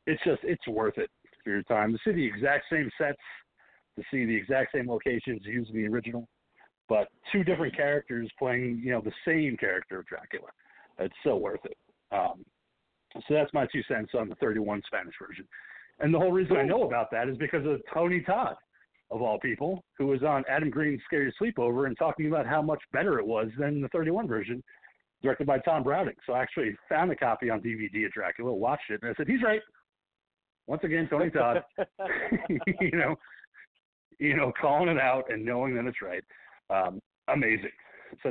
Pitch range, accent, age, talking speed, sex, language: 115-165 Hz, American, 50-69, 195 wpm, male, English